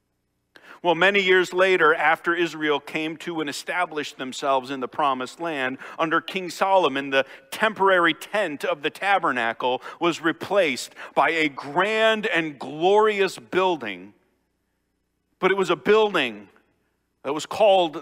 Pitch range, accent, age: 140-185 Hz, American, 50-69